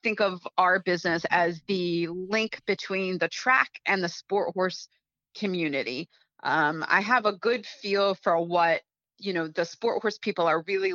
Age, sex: 30-49, female